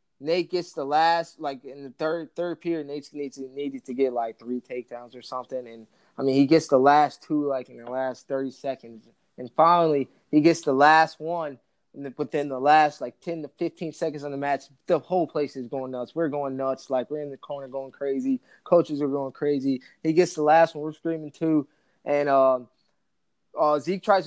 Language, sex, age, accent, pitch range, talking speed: English, male, 20-39, American, 135-155 Hz, 210 wpm